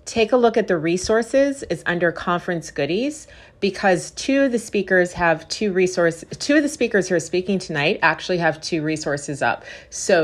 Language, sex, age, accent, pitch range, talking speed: English, female, 40-59, American, 170-215 Hz, 190 wpm